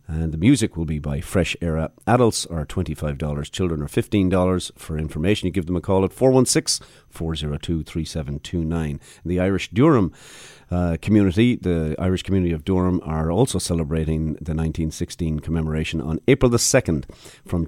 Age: 40-59